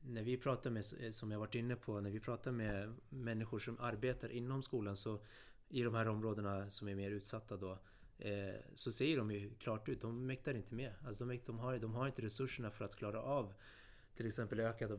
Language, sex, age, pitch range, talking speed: Swedish, male, 30-49, 105-120 Hz, 215 wpm